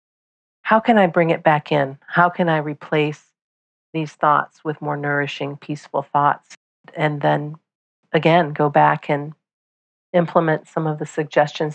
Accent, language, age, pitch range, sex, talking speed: American, English, 40-59, 145-190 Hz, female, 150 wpm